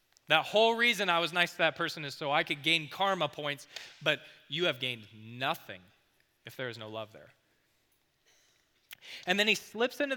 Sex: male